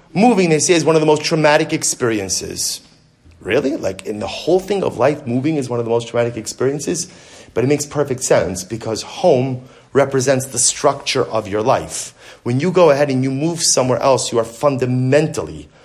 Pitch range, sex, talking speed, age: 125-160 Hz, male, 195 wpm, 30-49